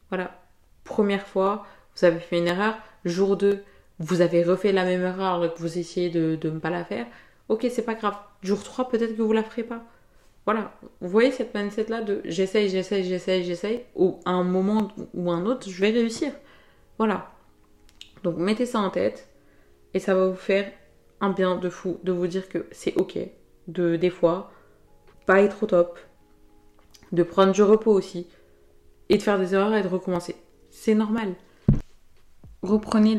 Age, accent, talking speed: 20-39, French, 185 wpm